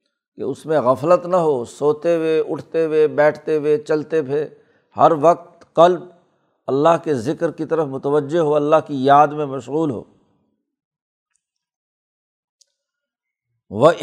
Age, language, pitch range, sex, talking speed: 60-79, Urdu, 140-165 Hz, male, 135 wpm